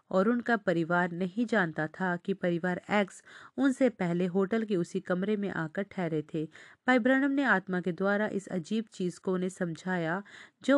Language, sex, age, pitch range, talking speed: Hindi, female, 40-59, 175-220 Hz, 180 wpm